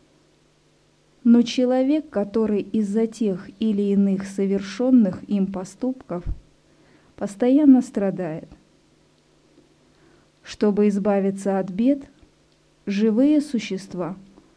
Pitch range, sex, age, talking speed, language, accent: 195-245 Hz, female, 20-39, 75 wpm, Russian, native